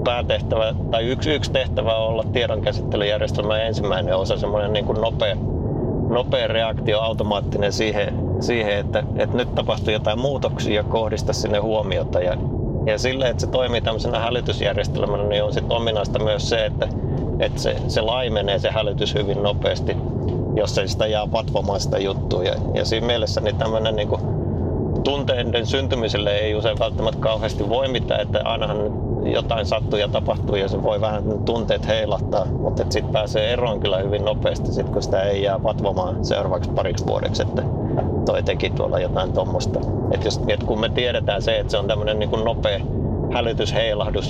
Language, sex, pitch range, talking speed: Finnish, male, 105-115 Hz, 155 wpm